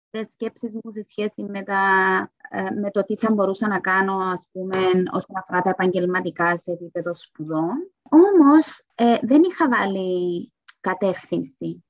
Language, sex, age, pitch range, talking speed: Greek, female, 20-39, 185-260 Hz, 145 wpm